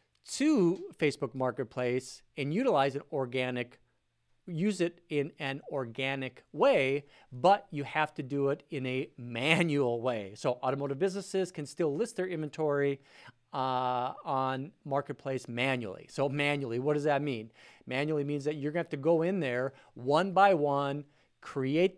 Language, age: English, 40-59